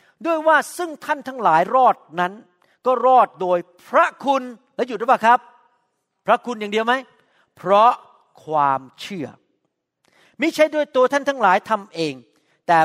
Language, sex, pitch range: Thai, male, 160-235 Hz